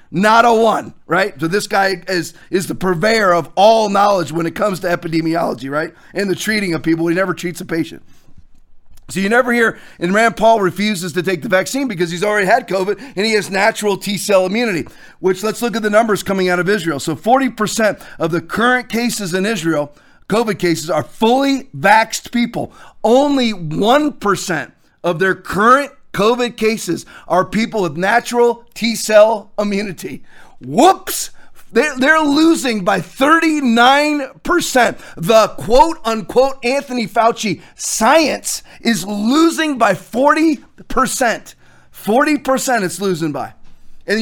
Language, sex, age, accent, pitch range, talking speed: English, male, 40-59, American, 185-245 Hz, 155 wpm